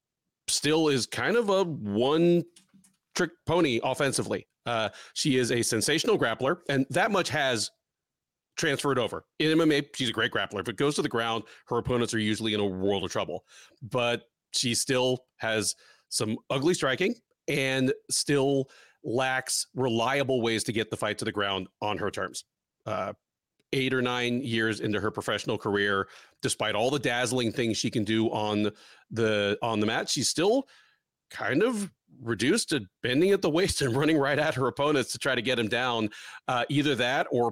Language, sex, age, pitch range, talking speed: English, male, 40-59, 110-135 Hz, 180 wpm